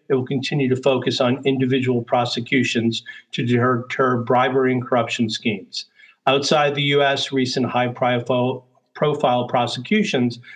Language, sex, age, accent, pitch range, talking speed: English, male, 50-69, American, 120-140 Hz, 115 wpm